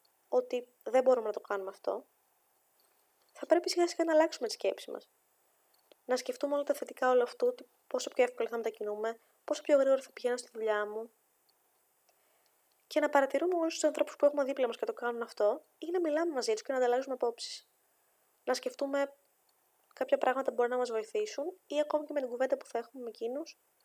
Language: Greek